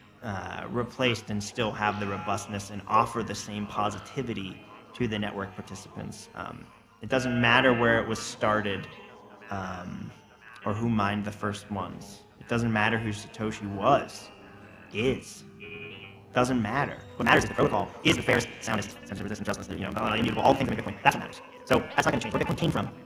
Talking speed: 185 wpm